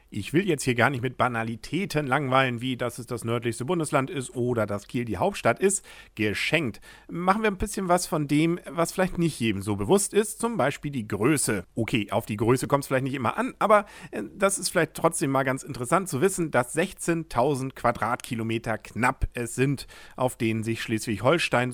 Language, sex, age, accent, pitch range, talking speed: English, male, 40-59, German, 115-170 Hz, 195 wpm